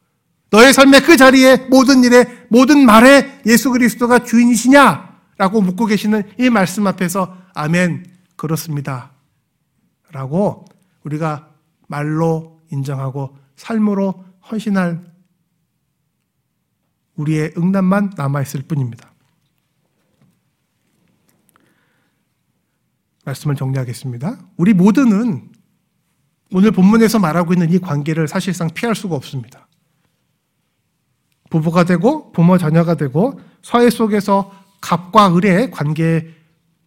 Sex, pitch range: male, 160-225 Hz